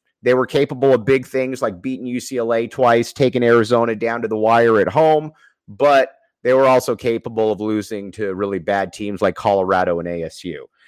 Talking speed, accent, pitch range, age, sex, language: 180 wpm, American, 115-145 Hz, 30-49, male, English